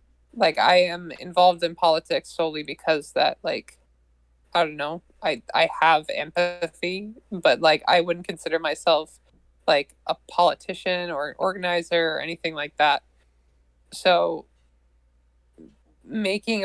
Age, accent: 20-39, American